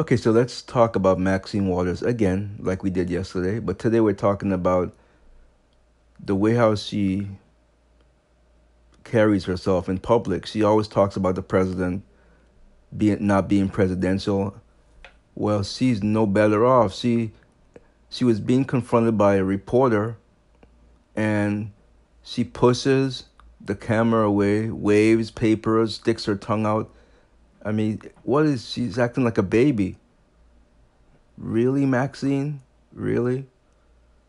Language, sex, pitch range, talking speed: English, male, 95-115 Hz, 125 wpm